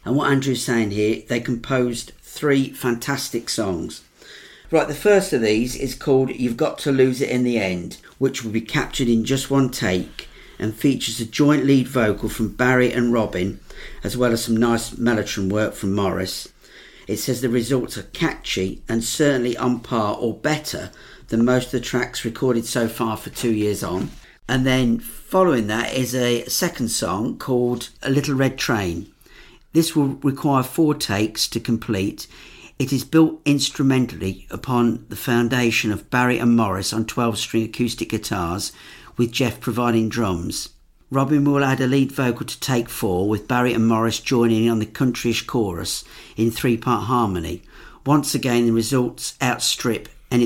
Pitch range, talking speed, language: 115-135 Hz, 170 wpm, English